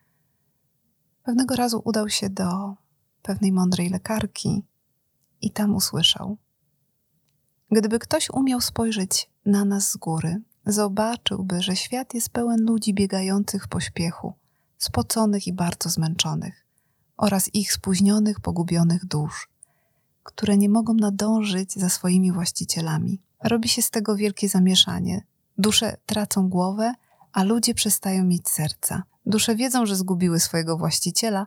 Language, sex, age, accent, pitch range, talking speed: Polish, female, 30-49, native, 175-215 Hz, 120 wpm